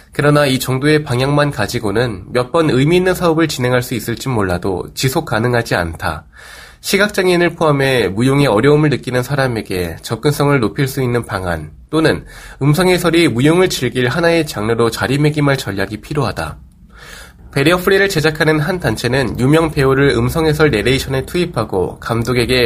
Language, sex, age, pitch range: Korean, male, 20-39, 115-155 Hz